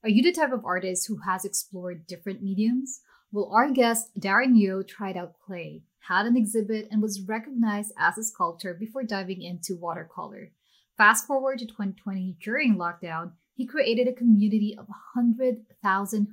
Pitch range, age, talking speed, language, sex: 190-240 Hz, 20-39, 160 wpm, English, female